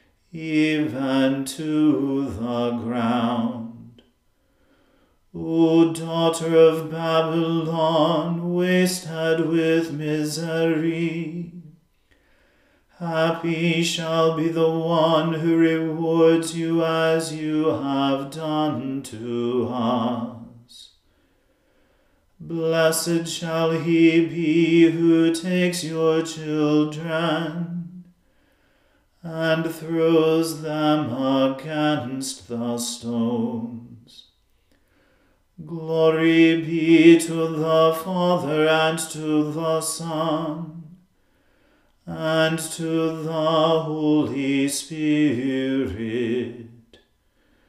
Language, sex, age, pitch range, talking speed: English, male, 40-59, 150-165 Hz, 65 wpm